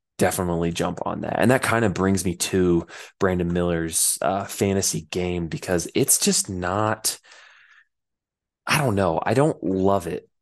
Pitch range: 90-105 Hz